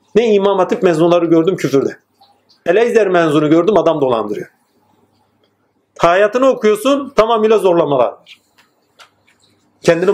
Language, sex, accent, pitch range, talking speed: Turkish, male, native, 170-250 Hz, 95 wpm